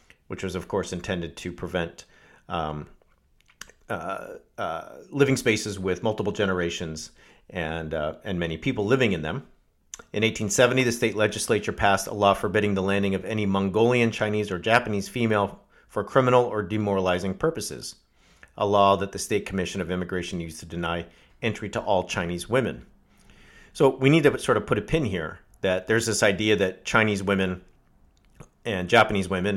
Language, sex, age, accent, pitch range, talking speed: English, male, 40-59, American, 90-105 Hz, 165 wpm